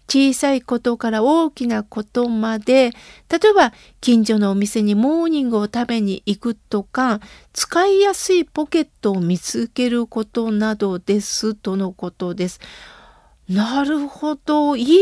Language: Japanese